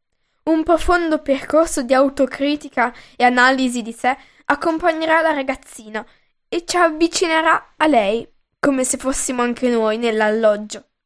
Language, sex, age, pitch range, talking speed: Italian, female, 10-29, 240-310 Hz, 125 wpm